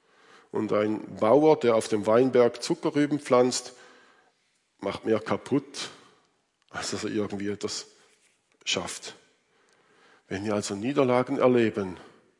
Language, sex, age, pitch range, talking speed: German, male, 50-69, 105-145 Hz, 110 wpm